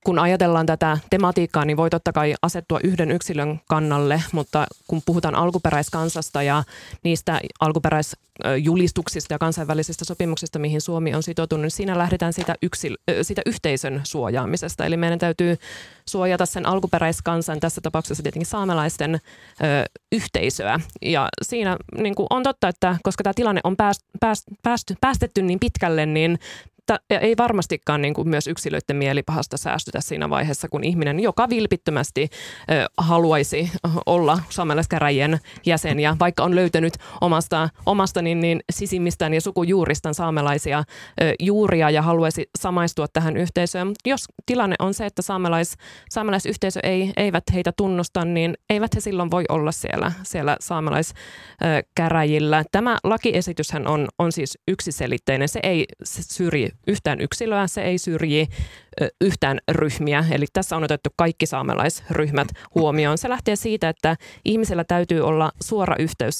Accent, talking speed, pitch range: native, 135 wpm, 155-185 Hz